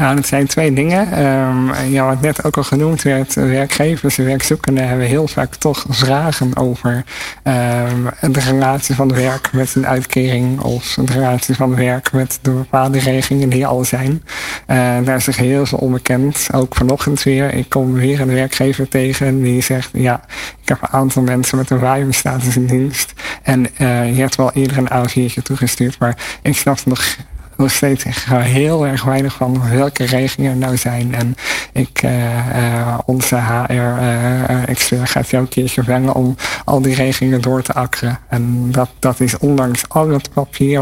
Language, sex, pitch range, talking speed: Dutch, male, 125-135 Hz, 180 wpm